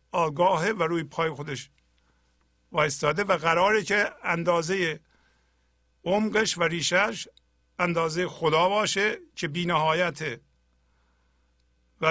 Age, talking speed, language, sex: 50-69, 95 wpm, Persian, male